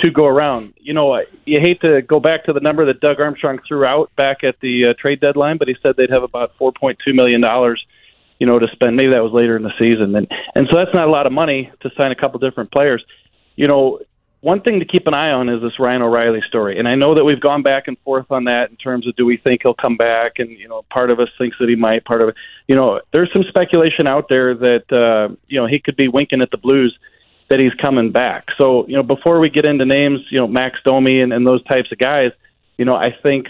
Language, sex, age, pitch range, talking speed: English, male, 40-59, 120-150 Hz, 270 wpm